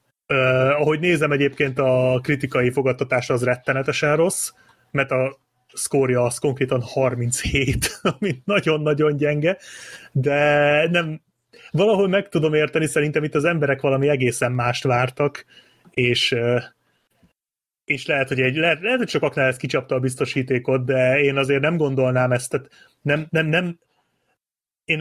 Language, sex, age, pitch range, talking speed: Hungarian, male, 30-49, 125-150 Hz, 135 wpm